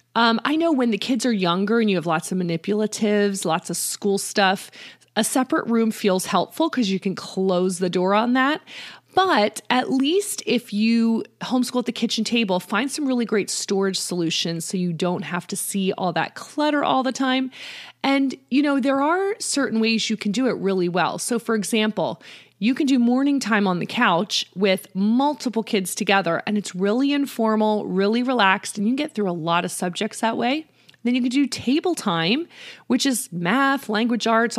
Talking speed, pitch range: 200 wpm, 185-240 Hz